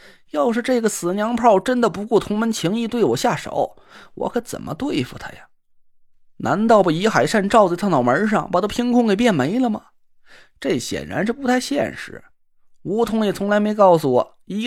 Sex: male